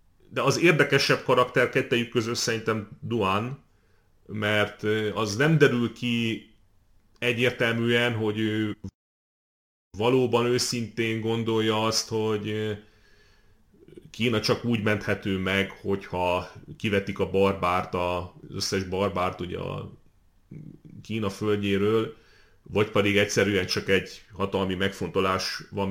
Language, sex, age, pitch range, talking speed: Hungarian, male, 30-49, 95-110 Hz, 105 wpm